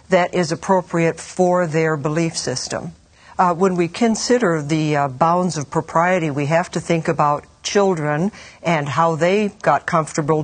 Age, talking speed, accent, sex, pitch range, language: 60-79, 155 wpm, American, female, 155-185 Hz, English